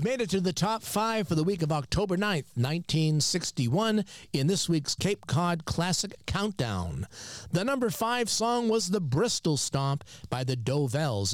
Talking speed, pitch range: 165 wpm, 130-185 Hz